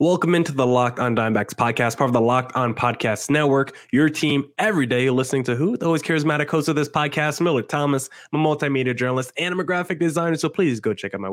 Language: English